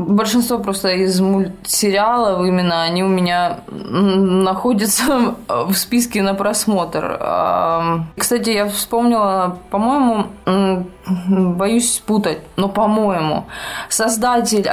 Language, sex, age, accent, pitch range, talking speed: Russian, female, 20-39, native, 185-235 Hz, 90 wpm